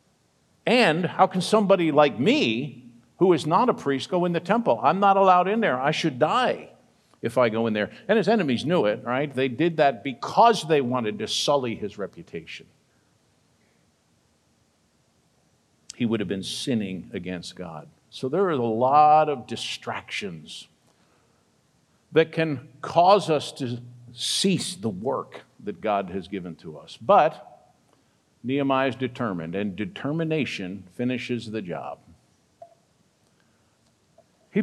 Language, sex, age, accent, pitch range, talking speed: English, male, 50-69, American, 115-170 Hz, 140 wpm